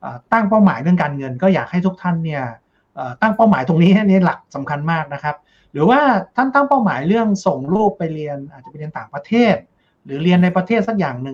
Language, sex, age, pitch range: Thai, male, 60-79, 155-200 Hz